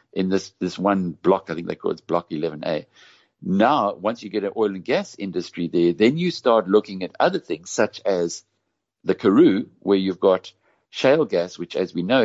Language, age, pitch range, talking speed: English, 60-79, 85-105 Hz, 205 wpm